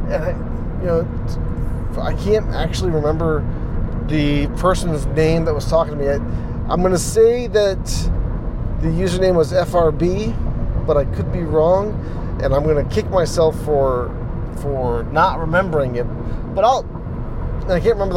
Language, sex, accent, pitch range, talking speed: English, male, American, 135-185 Hz, 155 wpm